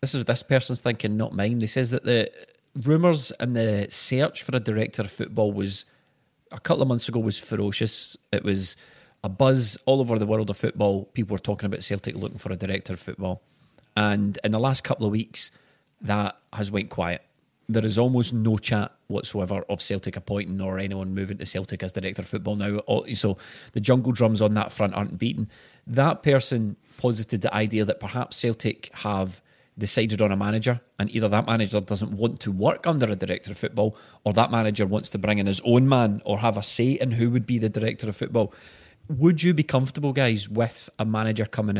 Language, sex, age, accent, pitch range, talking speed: English, male, 30-49, British, 100-120 Hz, 210 wpm